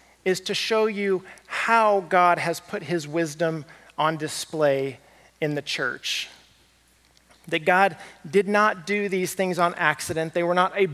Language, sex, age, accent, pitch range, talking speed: English, male, 40-59, American, 150-190 Hz, 155 wpm